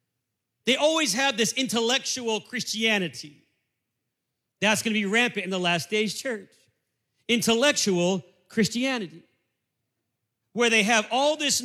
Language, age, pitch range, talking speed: English, 40-59, 150-235 Hz, 115 wpm